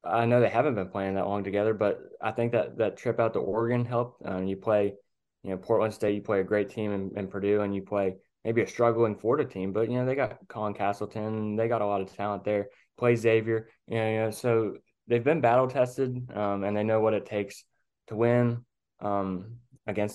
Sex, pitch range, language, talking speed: male, 100-115 Hz, English, 230 wpm